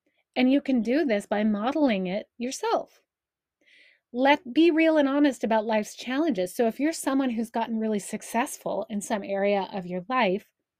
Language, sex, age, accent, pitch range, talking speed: English, female, 30-49, American, 200-270 Hz, 170 wpm